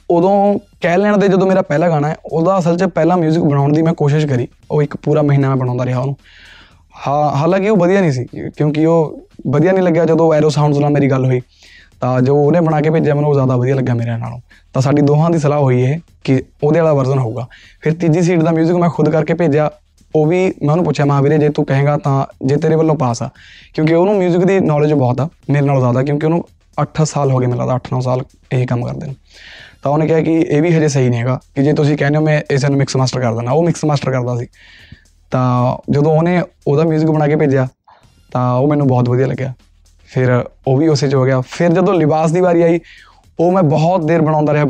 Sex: male